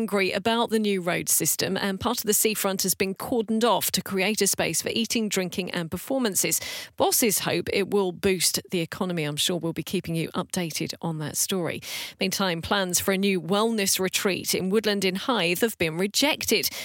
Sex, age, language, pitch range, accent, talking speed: female, 40-59, English, 180-225 Hz, British, 195 wpm